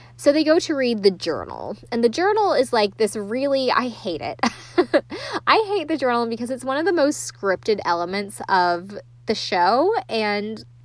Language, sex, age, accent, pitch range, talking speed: English, female, 20-39, American, 180-235 Hz, 185 wpm